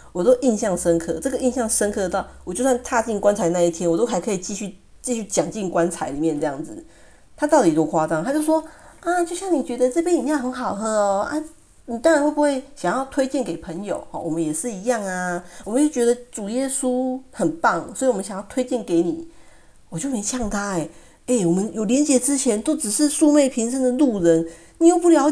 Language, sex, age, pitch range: Chinese, female, 40-59, 170-270 Hz